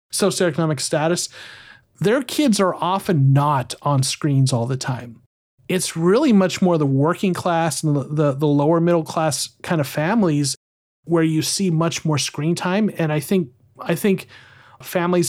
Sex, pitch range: male, 140-175 Hz